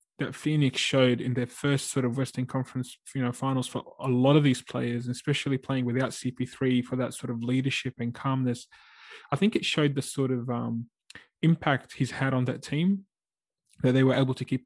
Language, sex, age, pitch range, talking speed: English, male, 20-39, 120-135 Hz, 210 wpm